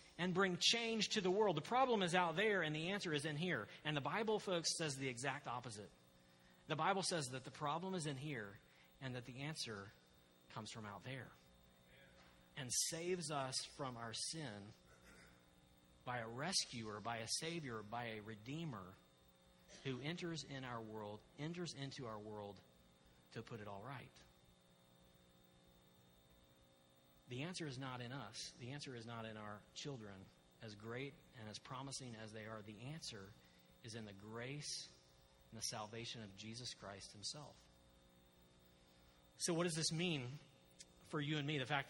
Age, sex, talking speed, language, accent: 40-59, male, 165 wpm, English, American